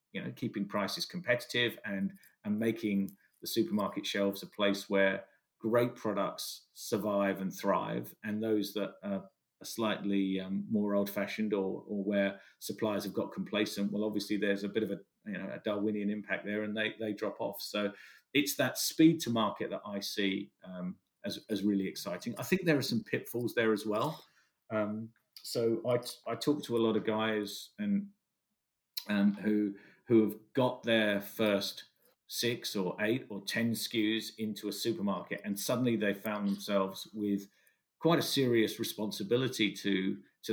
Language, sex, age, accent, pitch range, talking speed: English, male, 40-59, British, 100-115 Hz, 175 wpm